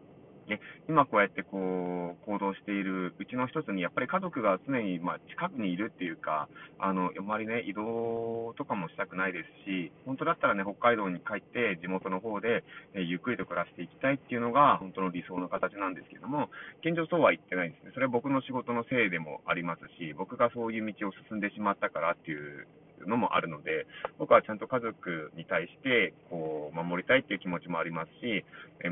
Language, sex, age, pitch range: Japanese, male, 30-49, 90-125 Hz